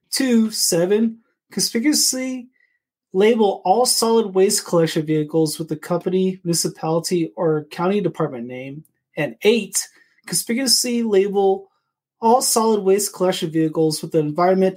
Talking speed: 120 wpm